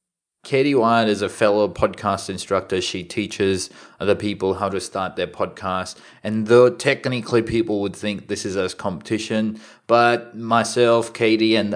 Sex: male